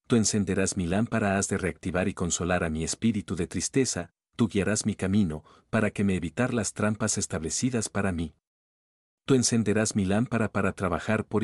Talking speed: 180 wpm